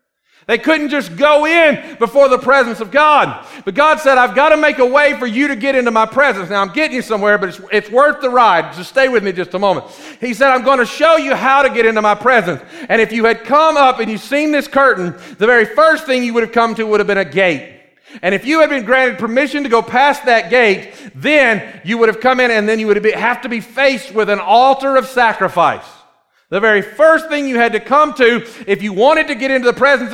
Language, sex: English, male